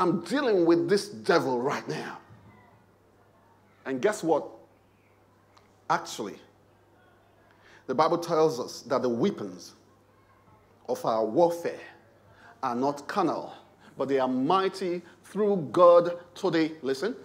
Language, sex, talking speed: English, male, 110 wpm